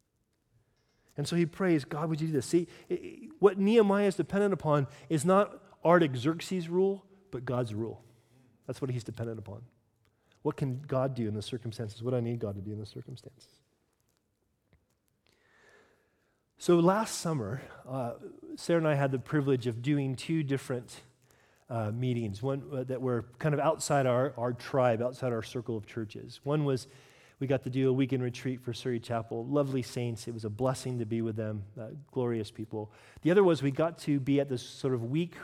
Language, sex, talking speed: English, male, 190 wpm